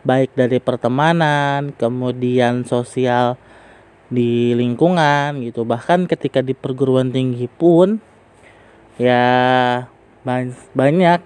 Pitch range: 125-155 Hz